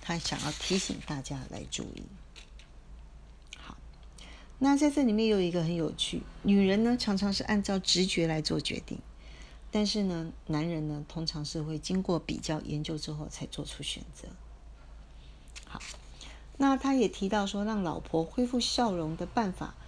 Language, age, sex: Chinese, 40-59, female